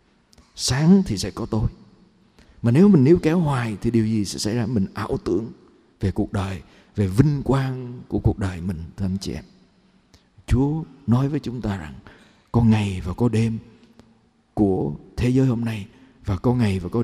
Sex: male